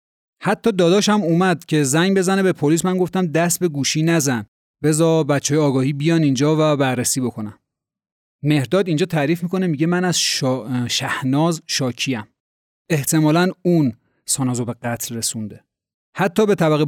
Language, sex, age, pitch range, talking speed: Persian, male, 30-49, 135-180 Hz, 145 wpm